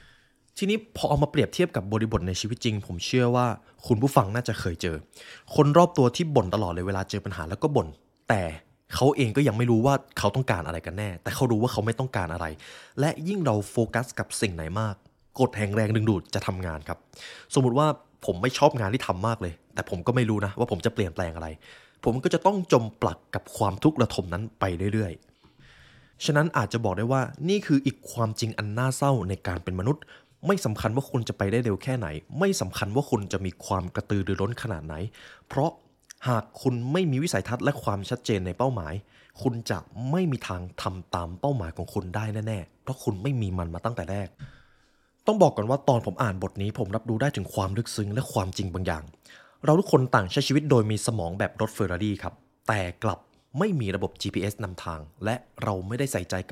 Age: 20-39